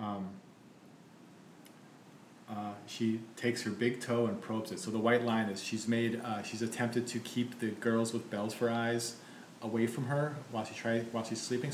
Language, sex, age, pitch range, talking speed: English, male, 40-59, 105-120 Hz, 190 wpm